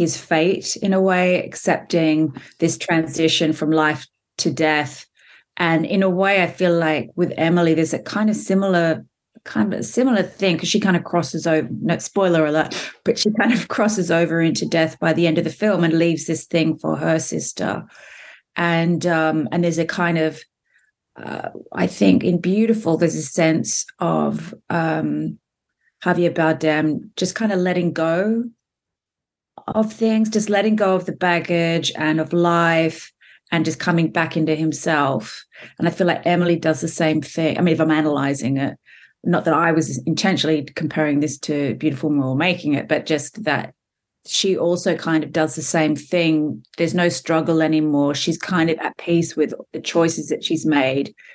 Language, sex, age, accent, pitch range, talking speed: English, female, 30-49, Australian, 155-175 Hz, 180 wpm